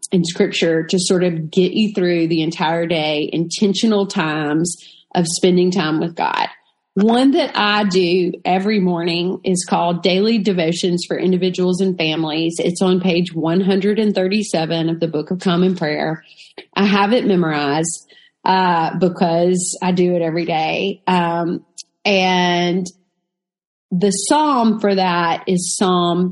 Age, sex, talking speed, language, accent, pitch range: 30-49, female, 140 wpm, English, American, 175-200 Hz